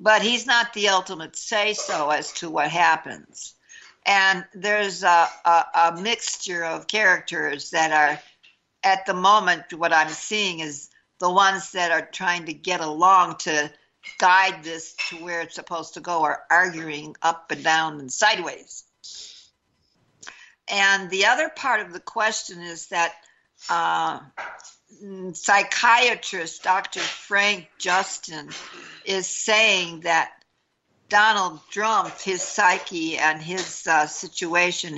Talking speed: 130 wpm